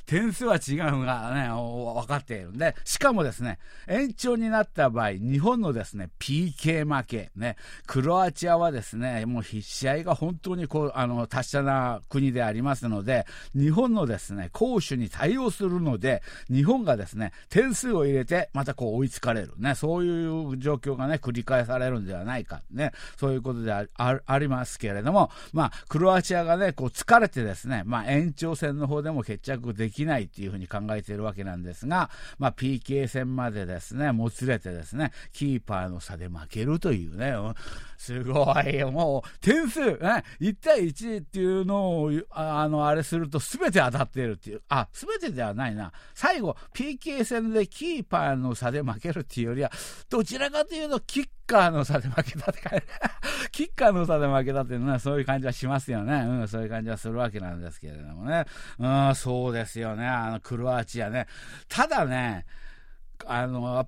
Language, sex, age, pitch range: Japanese, male, 50-69, 120-170 Hz